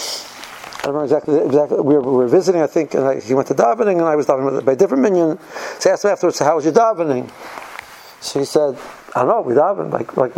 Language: English